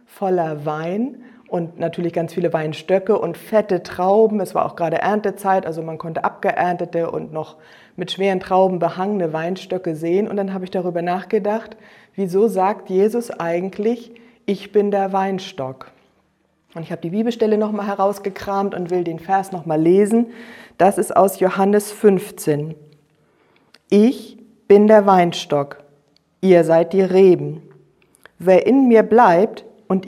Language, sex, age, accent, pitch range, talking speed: German, female, 50-69, German, 170-210 Hz, 145 wpm